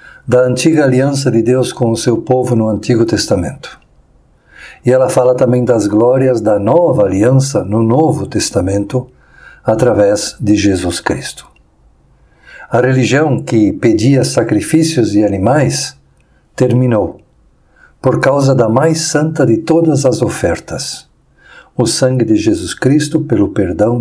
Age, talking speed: 50-69, 130 wpm